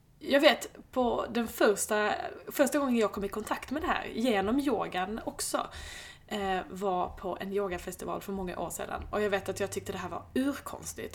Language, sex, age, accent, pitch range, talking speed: Swedish, female, 20-39, native, 185-220 Hz, 190 wpm